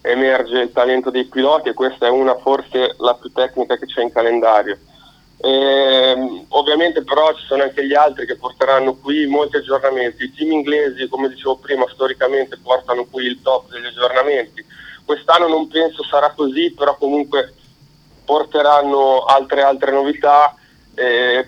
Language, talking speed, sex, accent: Italian, 155 wpm, male, native